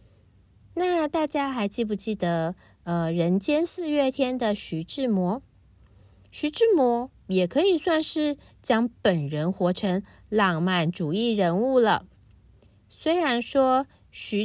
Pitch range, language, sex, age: 180-260 Hz, Chinese, female, 50-69